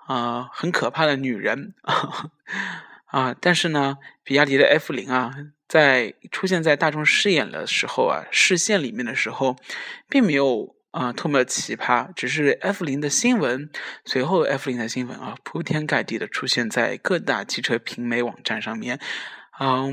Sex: male